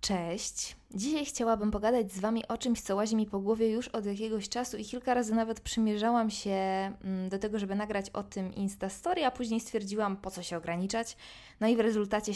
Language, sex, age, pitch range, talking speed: Polish, female, 20-39, 195-235 Hz, 205 wpm